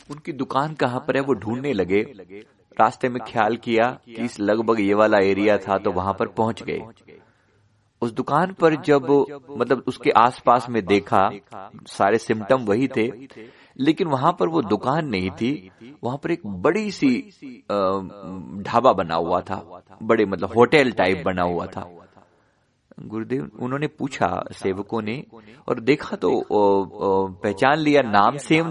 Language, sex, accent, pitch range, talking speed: Hindi, male, native, 100-125 Hz, 155 wpm